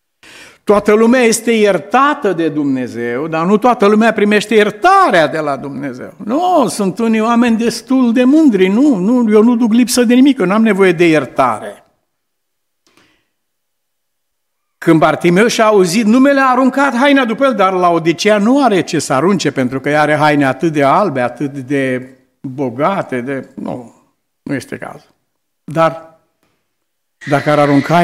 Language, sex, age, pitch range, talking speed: Romanian, male, 60-79, 135-210 Hz, 160 wpm